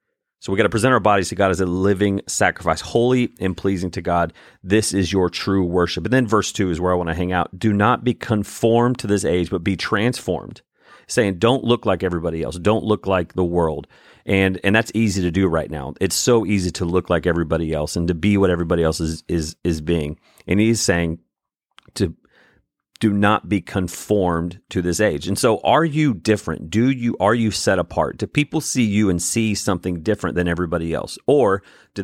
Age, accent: 40-59, American